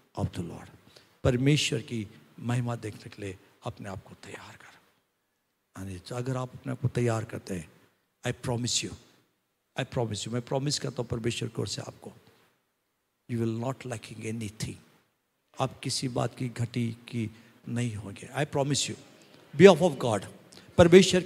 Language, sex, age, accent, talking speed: Hindi, male, 50-69, native, 160 wpm